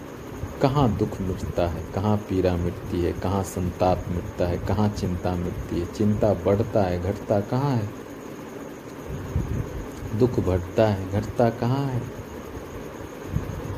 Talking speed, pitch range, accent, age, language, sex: 115 wpm, 100-125 Hz, native, 50-69, Hindi, male